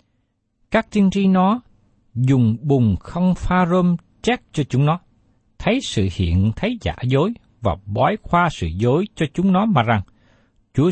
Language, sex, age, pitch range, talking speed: Vietnamese, male, 60-79, 110-165 Hz, 165 wpm